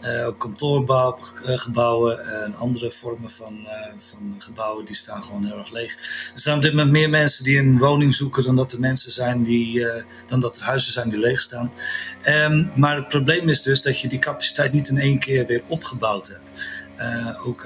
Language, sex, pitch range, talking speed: Dutch, male, 120-140 Hz, 210 wpm